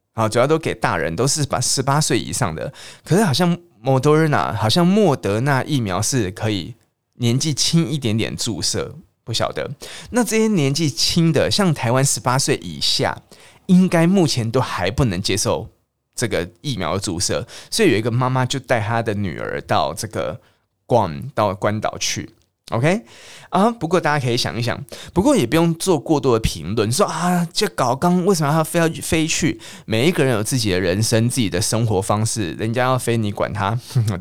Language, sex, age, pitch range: Chinese, male, 20-39, 110-155 Hz